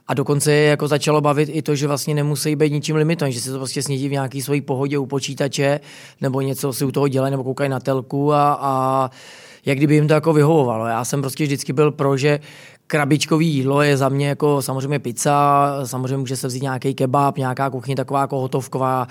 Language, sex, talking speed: Czech, male, 215 wpm